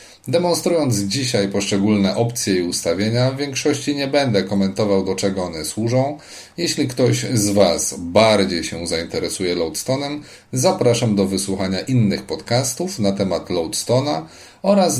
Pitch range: 95-125 Hz